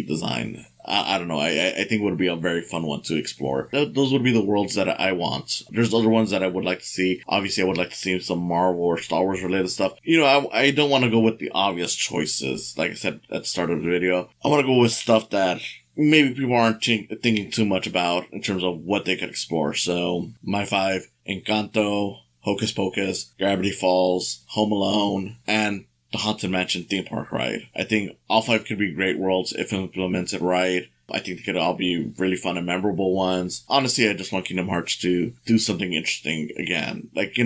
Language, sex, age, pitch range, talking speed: English, male, 20-39, 90-110 Hz, 225 wpm